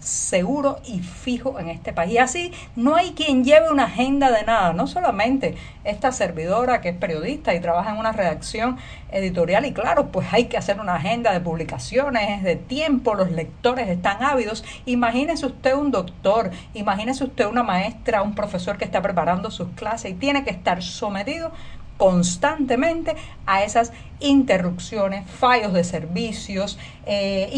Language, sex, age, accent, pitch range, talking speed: Spanish, female, 50-69, American, 185-260 Hz, 160 wpm